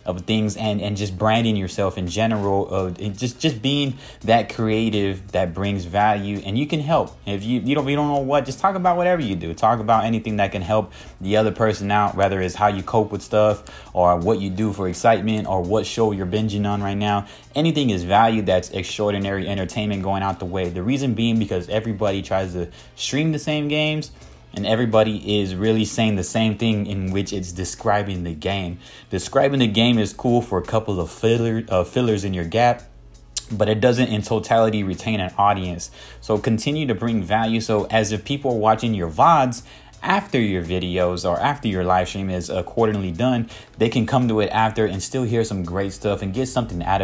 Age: 20-39